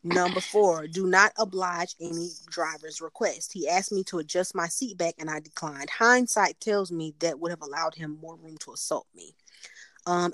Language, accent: English, American